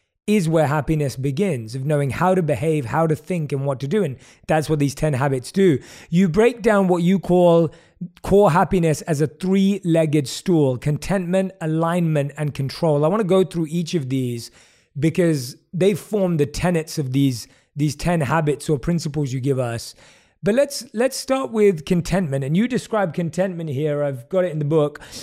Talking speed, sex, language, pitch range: 185 wpm, male, English, 150-195 Hz